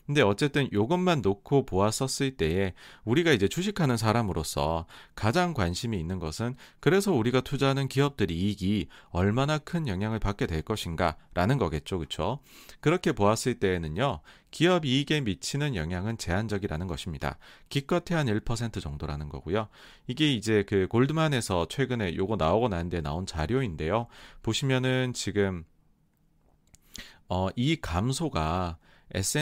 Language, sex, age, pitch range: Korean, male, 40-59, 90-140 Hz